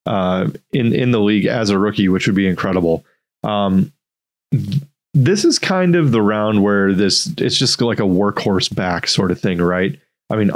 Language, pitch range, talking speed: English, 95-120 Hz, 195 wpm